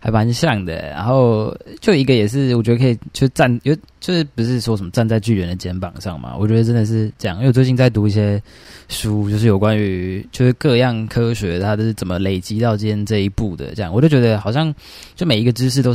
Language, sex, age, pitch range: Chinese, male, 20-39, 95-120 Hz